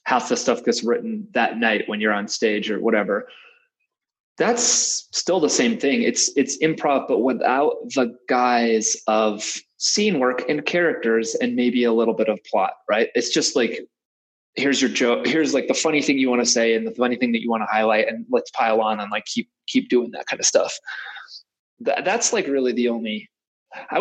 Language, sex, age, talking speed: English, male, 20-39, 205 wpm